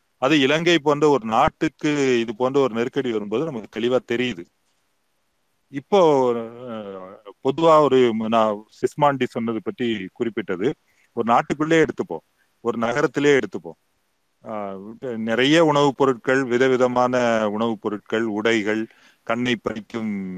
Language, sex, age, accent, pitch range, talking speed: Tamil, male, 30-49, native, 110-140 Hz, 110 wpm